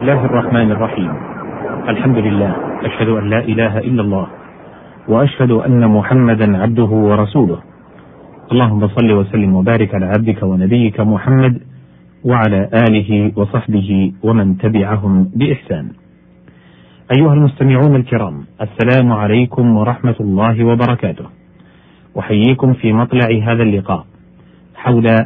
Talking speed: 105 wpm